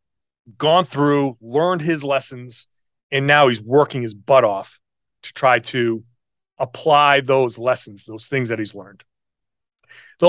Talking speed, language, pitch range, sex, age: 140 wpm, English, 130-200 Hz, male, 30-49